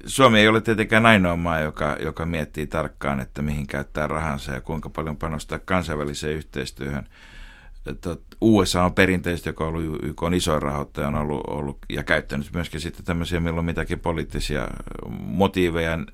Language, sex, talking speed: Finnish, male, 150 wpm